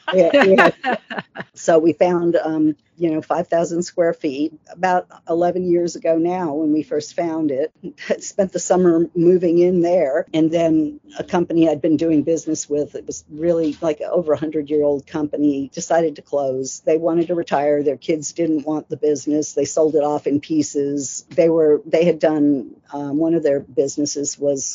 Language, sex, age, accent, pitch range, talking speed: English, female, 50-69, American, 150-175 Hz, 185 wpm